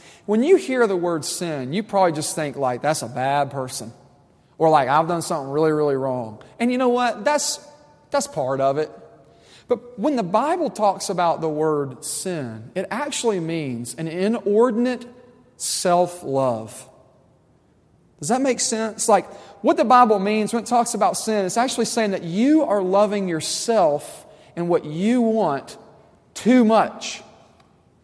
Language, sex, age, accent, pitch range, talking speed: English, male, 40-59, American, 150-210 Hz, 160 wpm